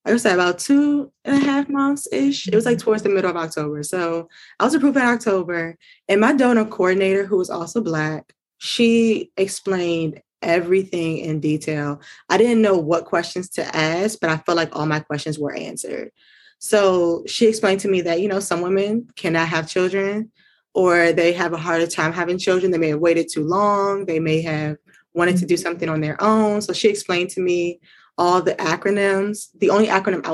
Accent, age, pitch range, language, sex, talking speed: American, 20-39, 160-195 Hz, English, female, 200 wpm